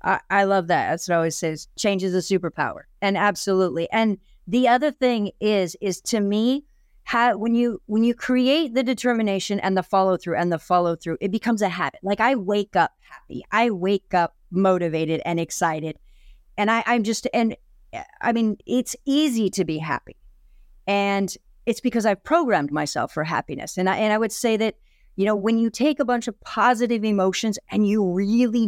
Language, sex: English, female